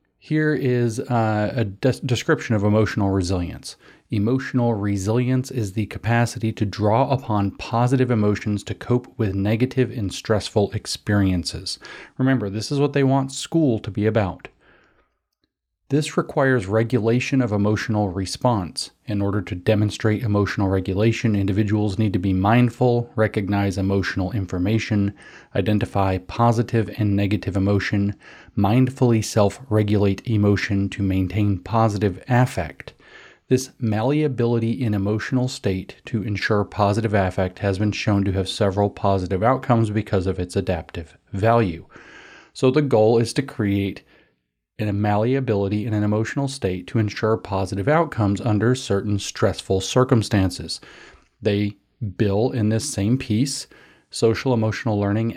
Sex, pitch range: male, 100-120 Hz